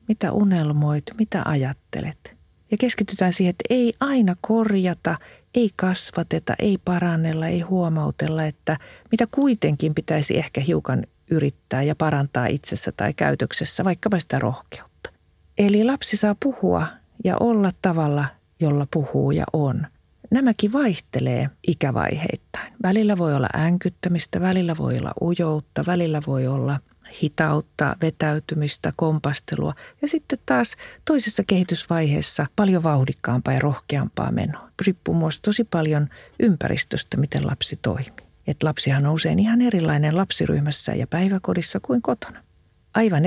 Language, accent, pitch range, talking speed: Finnish, native, 150-205 Hz, 125 wpm